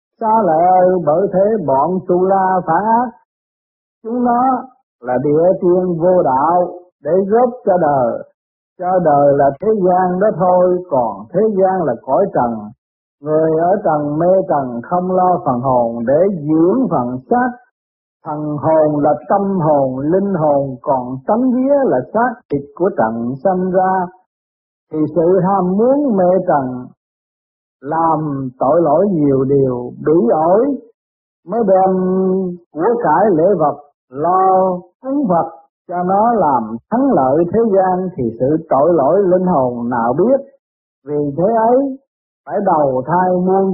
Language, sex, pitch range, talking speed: Vietnamese, male, 150-200 Hz, 150 wpm